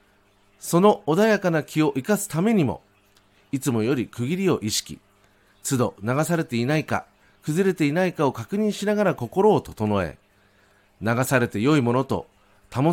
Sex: male